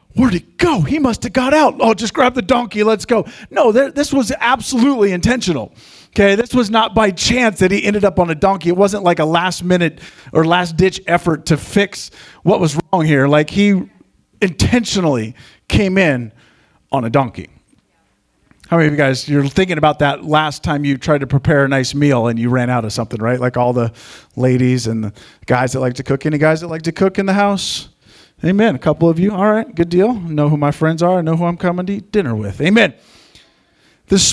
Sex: male